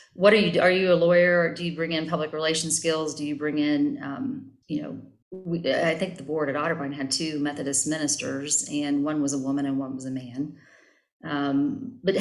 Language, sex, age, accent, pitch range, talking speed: English, female, 40-59, American, 135-165 Hz, 215 wpm